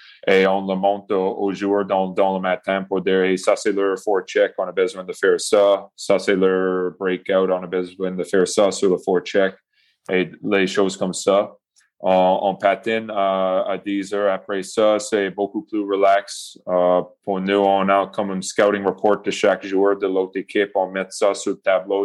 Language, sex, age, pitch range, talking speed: French, male, 20-39, 95-100 Hz, 205 wpm